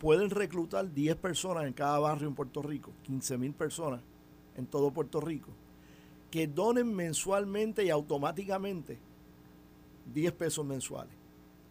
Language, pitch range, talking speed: Spanish, 125-175 Hz, 130 wpm